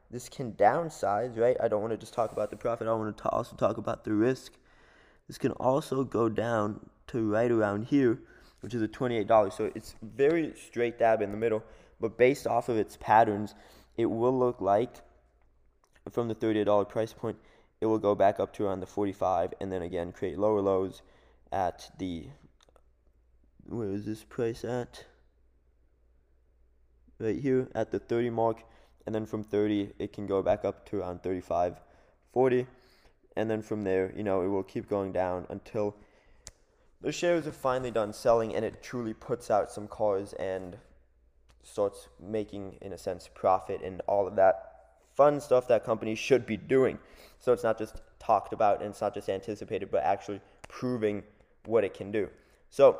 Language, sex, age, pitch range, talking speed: English, male, 20-39, 95-115 Hz, 190 wpm